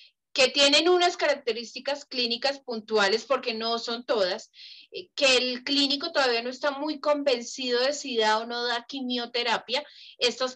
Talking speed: 150 wpm